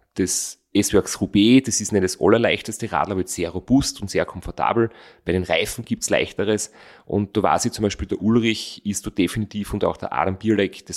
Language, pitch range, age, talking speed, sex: German, 95-115 Hz, 30-49, 210 wpm, male